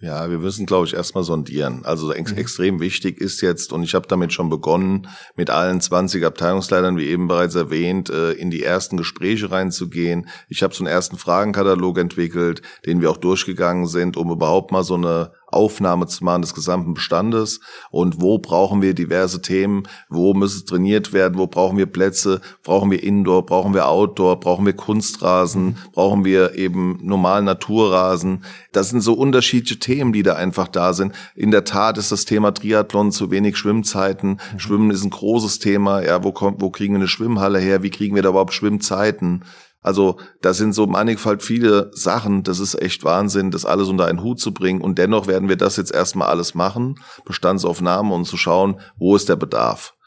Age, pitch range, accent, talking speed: 40-59, 90-100 Hz, German, 190 wpm